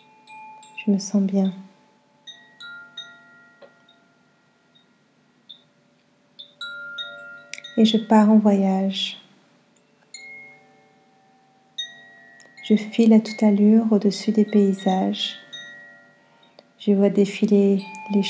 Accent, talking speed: French, 70 wpm